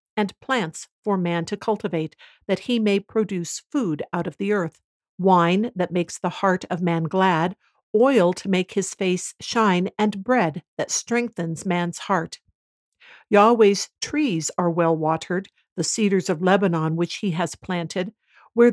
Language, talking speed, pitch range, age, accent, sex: English, 155 wpm, 170-210 Hz, 60-79, American, female